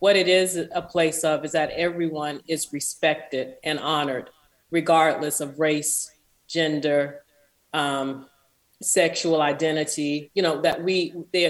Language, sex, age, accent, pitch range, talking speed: English, female, 40-59, American, 150-170 Hz, 130 wpm